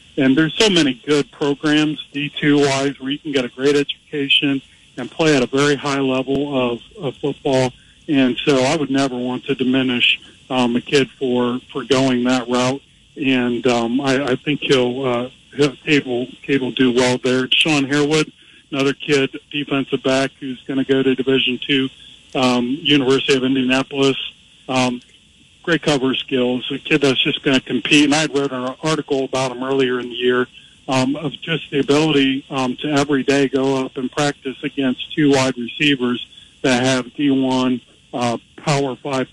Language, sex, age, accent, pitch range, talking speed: English, male, 50-69, American, 125-145 Hz, 175 wpm